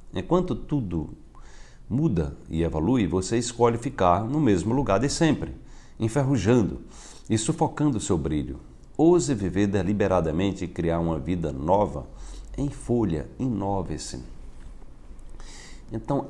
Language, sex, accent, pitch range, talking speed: Portuguese, male, Brazilian, 80-115 Hz, 115 wpm